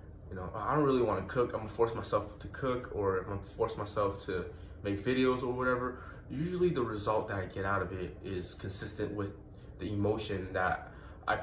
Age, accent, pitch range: 20-39, American, 95-120 Hz